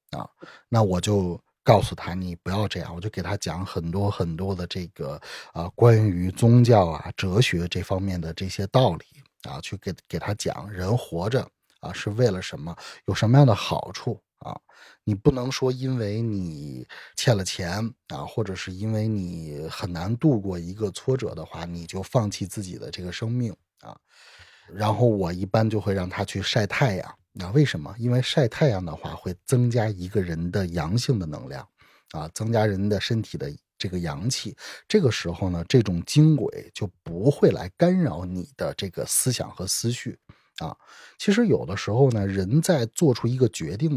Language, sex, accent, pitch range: Chinese, male, native, 90-120 Hz